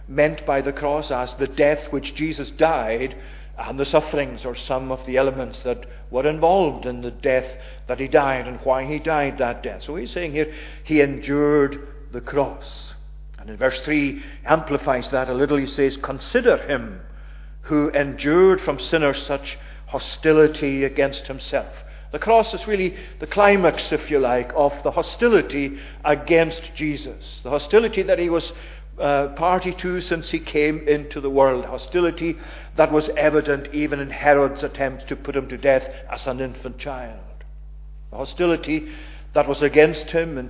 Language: English